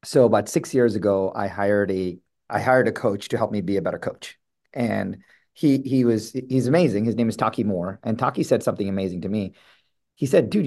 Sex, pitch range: male, 115-180 Hz